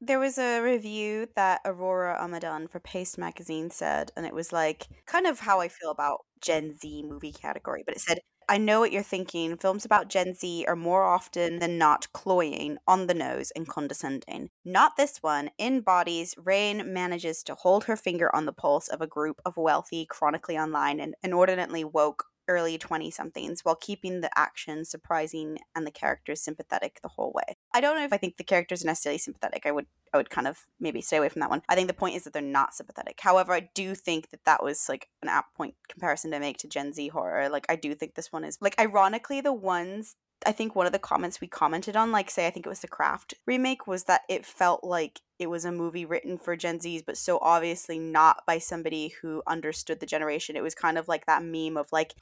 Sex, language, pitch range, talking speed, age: female, English, 160-195 Hz, 225 wpm, 20-39